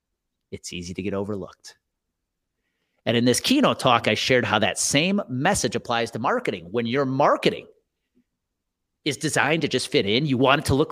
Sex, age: male, 30-49